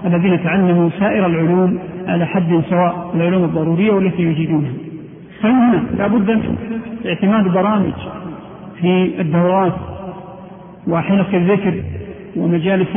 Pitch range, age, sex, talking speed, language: 180-200 Hz, 40-59, male, 100 wpm, Arabic